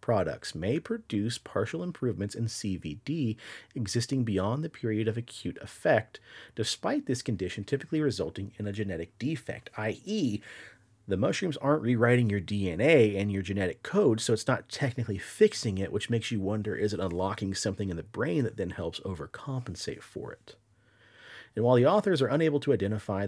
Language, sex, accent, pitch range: English, male, American, 100-145 Hz